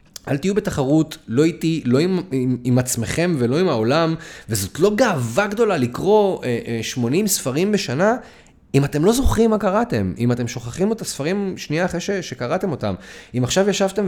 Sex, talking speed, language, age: male, 170 wpm, Hebrew, 30-49